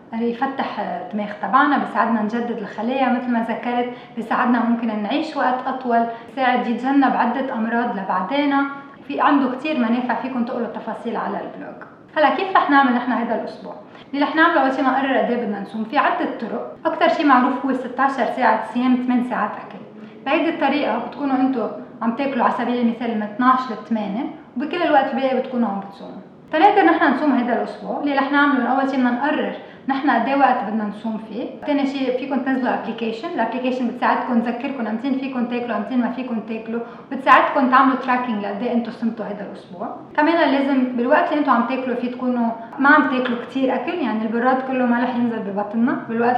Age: 20-39